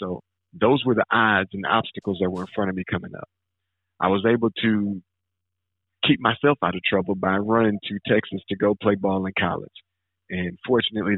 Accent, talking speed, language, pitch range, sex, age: American, 195 wpm, English, 90-105 Hz, male, 50-69